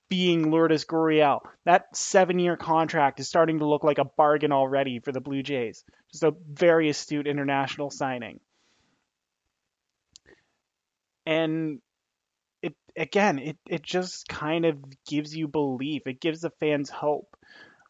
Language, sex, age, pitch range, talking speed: English, male, 20-39, 150-180 Hz, 135 wpm